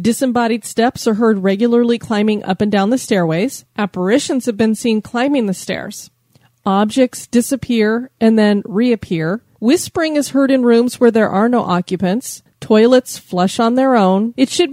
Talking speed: 165 wpm